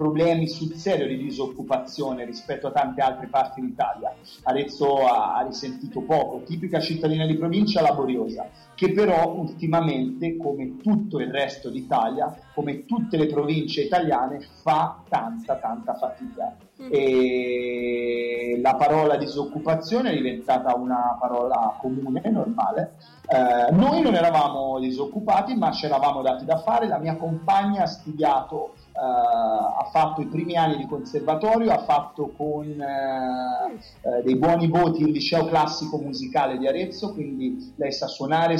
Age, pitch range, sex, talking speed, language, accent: 30-49, 140-205 Hz, male, 135 wpm, Italian, native